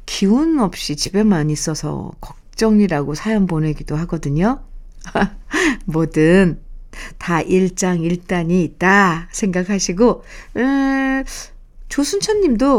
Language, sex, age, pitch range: Korean, female, 50-69, 175-240 Hz